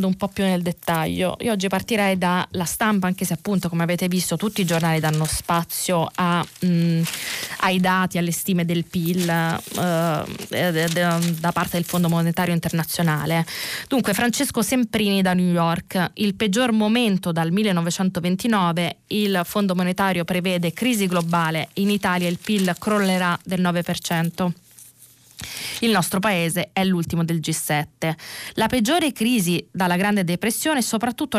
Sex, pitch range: female, 170-205 Hz